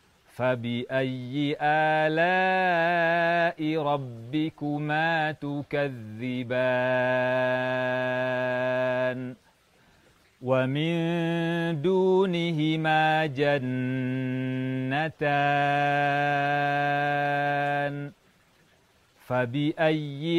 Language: Indonesian